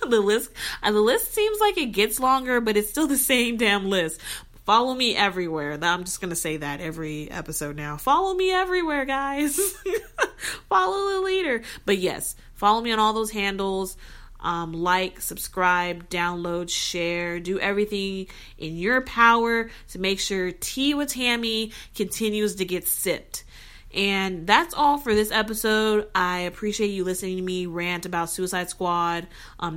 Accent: American